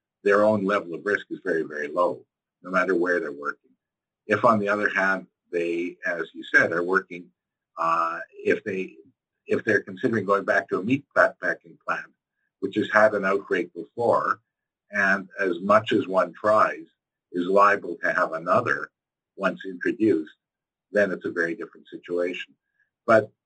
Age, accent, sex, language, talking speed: 50-69, American, male, English, 170 wpm